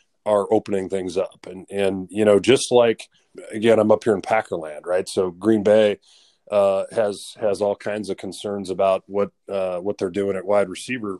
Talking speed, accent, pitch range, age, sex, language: 195 wpm, American, 95-120 Hz, 30-49, male, English